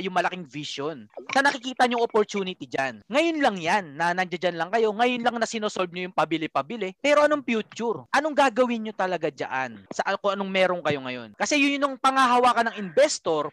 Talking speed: 200 wpm